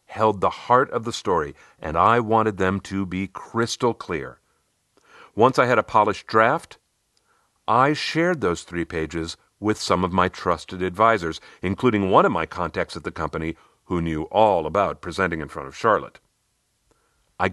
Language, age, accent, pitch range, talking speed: English, 50-69, American, 90-140 Hz, 170 wpm